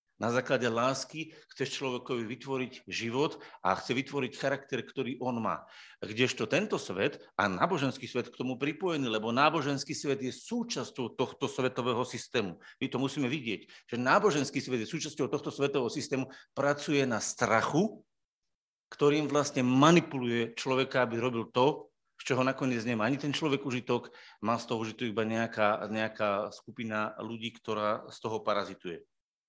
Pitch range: 115-140 Hz